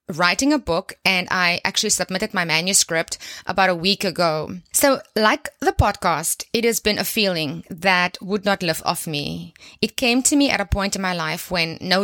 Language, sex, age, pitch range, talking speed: English, female, 20-39, 180-225 Hz, 200 wpm